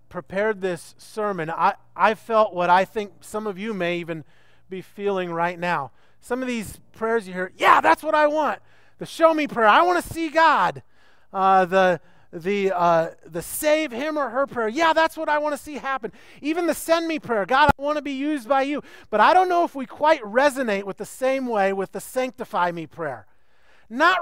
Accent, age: American, 30-49